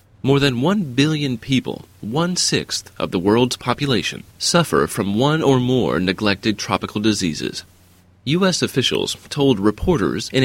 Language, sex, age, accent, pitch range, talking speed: English, male, 30-49, American, 95-140 Hz, 130 wpm